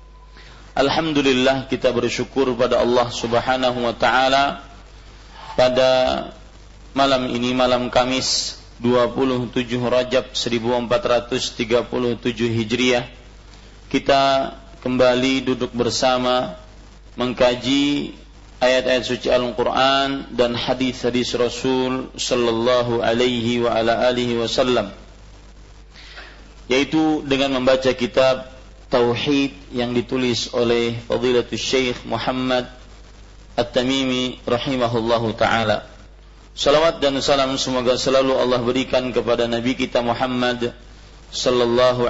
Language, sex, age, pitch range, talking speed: Malay, male, 40-59, 120-130 Hz, 85 wpm